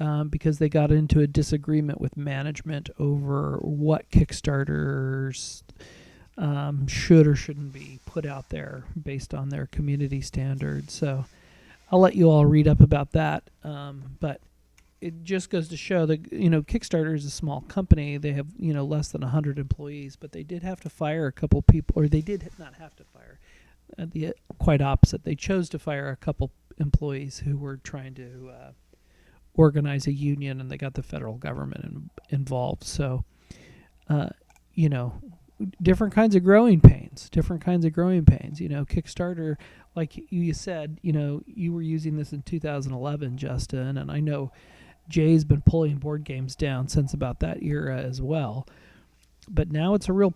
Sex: male